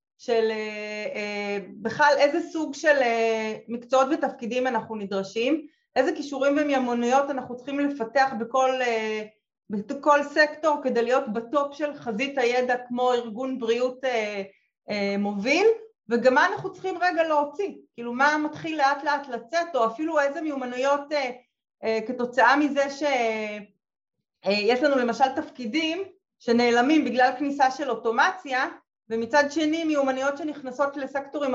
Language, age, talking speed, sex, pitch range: Hebrew, 30-49, 115 wpm, female, 230-290 Hz